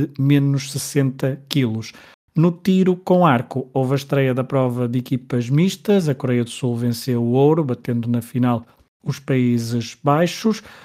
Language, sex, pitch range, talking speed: Portuguese, male, 125-150 Hz, 155 wpm